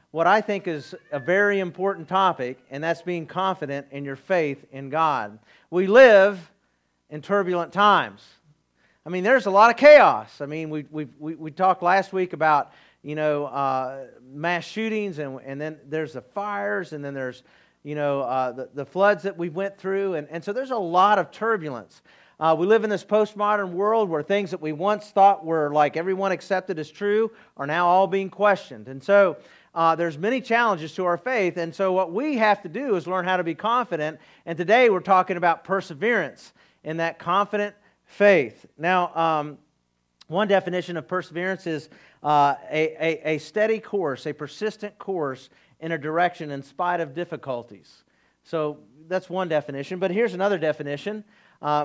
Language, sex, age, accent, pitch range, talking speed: English, male, 40-59, American, 150-195 Hz, 185 wpm